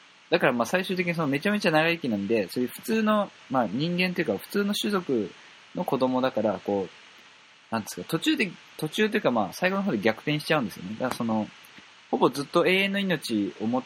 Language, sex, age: Japanese, male, 20-39